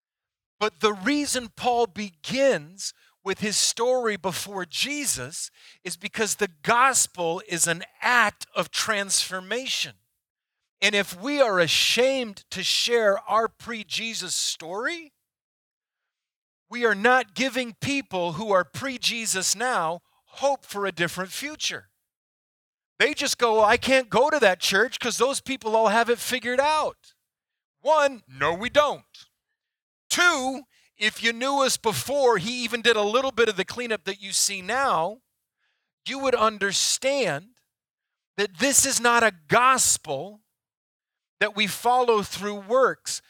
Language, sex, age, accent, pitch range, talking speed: English, male, 40-59, American, 195-255 Hz, 135 wpm